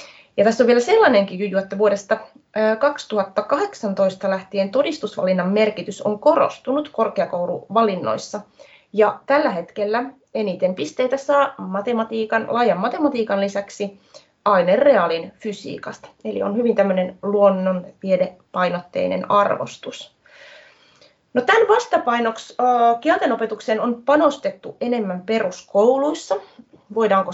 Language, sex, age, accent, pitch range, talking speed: Finnish, female, 30-49, native, 195-255 Hz, 90 wpm